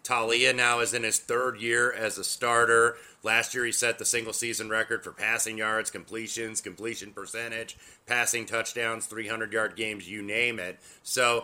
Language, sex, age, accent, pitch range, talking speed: English, male, 30-49, American, 110-125 Hz, 170 wpm